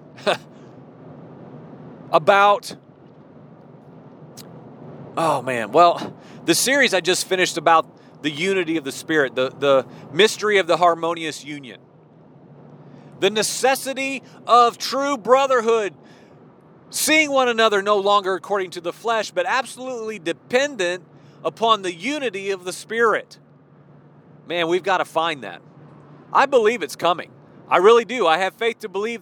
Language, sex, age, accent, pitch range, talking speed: English, male, 40-59, American, 170-225 Hz, 130 wpm